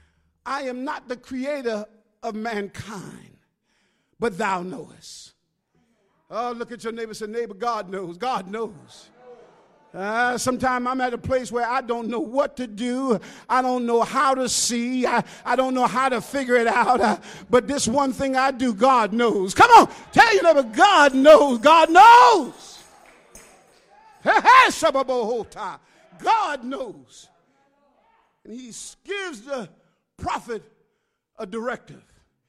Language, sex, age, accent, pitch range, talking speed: English, male, 50-69, American, 230-300 Hz, 145 wpm